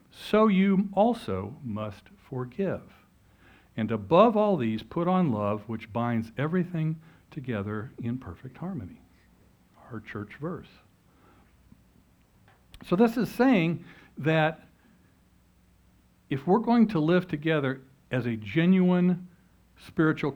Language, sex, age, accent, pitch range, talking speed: English, male, 60-79, American, 110-180 Hz, 110 wpm